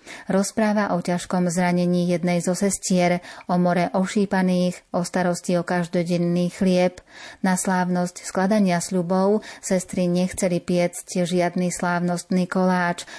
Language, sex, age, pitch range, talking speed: Slovak, female, 30-49, 175-190 Hz, 115 wpm